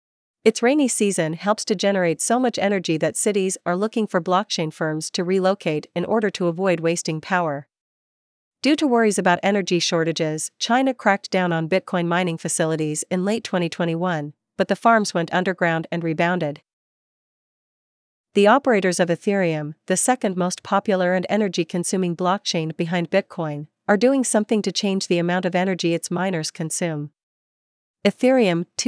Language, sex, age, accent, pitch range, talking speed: English, female, 40-59, American, 170-205 Hz, 150 wpm